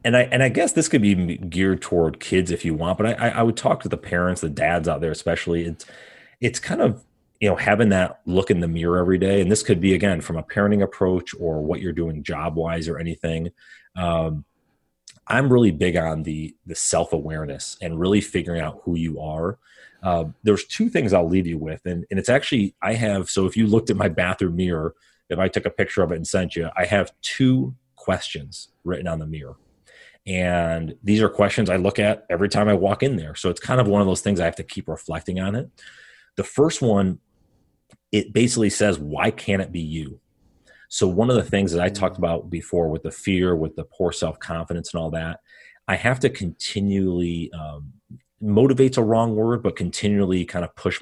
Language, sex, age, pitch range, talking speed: English, male, 30-49, 85-105 Hz, 220 wpm